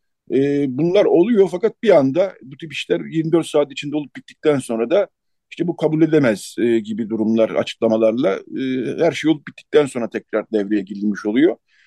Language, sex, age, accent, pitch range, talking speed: Turkish, male, 50-69, native, 125-155 Hz, 170 wpm